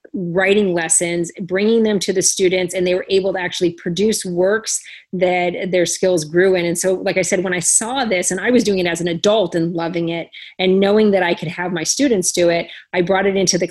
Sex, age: female, 30-49